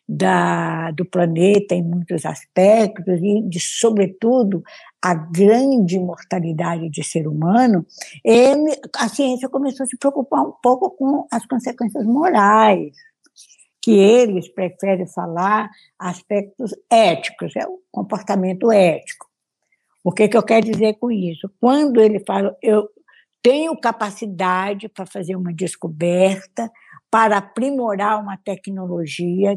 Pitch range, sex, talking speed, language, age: 185-240 Hz, female, 115 wpm, Portuguese, 60-79